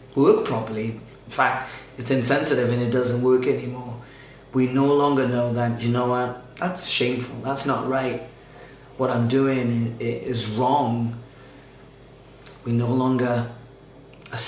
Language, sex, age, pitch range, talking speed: English, male, 30-49, 120-140 Hz, 135 wpm